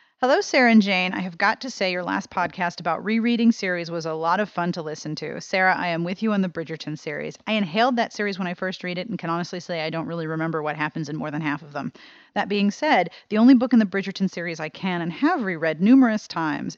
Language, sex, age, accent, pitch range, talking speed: English, female, 40-59, American, 165-215 Hz, 265 wpm